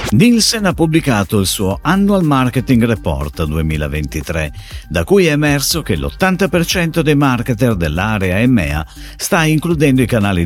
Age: 50-69